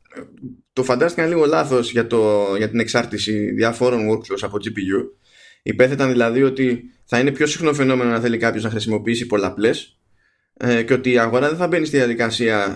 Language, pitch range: Greek, 105-130 Hz